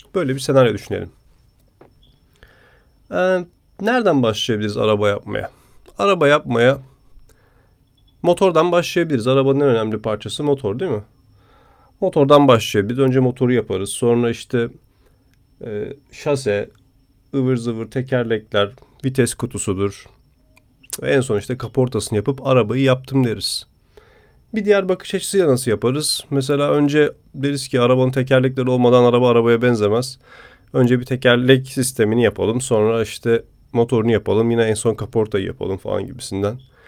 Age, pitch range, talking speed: 40-59, 110-135 Hz, 120 wpm